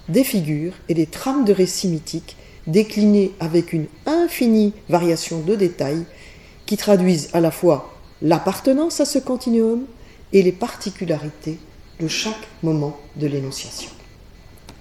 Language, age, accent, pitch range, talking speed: French, 40-59, French, 150-220 Hz, 130 wpm